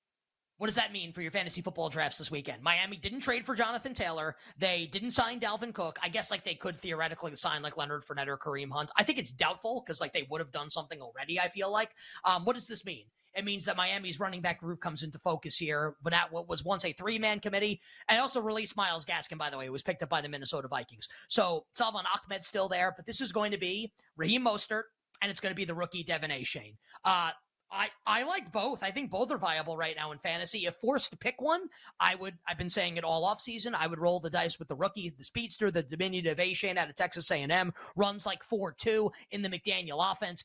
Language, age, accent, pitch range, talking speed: English, 20-39, American, 160-215 Hz, 250 wpm